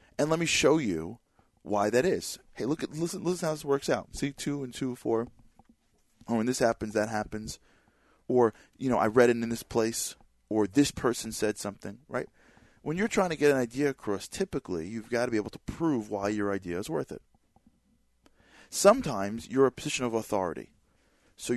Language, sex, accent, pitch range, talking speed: English, male, American, 100-125 Hz, 205 wpm